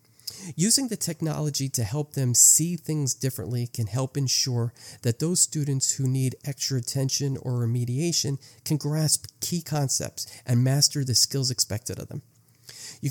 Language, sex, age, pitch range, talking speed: English, male, 40-59, 120-145 Hz, 150 wpm